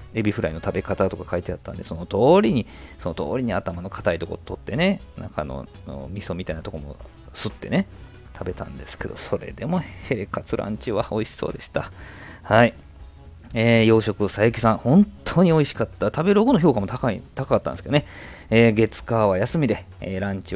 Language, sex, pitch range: Japanese, male, 90-110 Hz